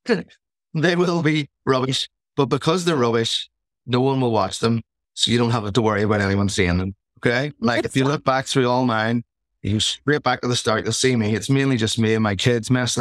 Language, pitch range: English, 105-130 Hz